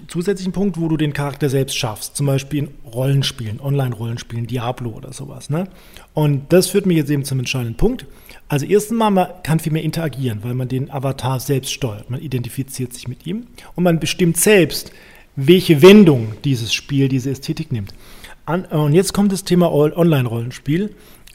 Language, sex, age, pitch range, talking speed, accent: German, male, 40-59, 130-165 Hz, 170 wpm, German